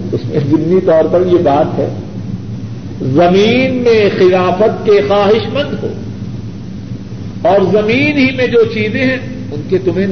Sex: male